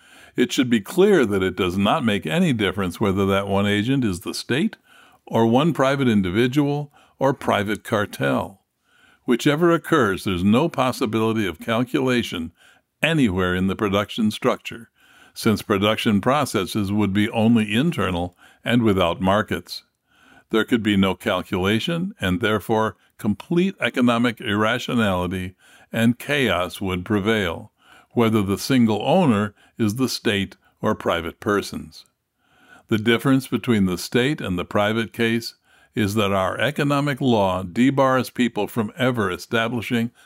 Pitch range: 100-120 Hz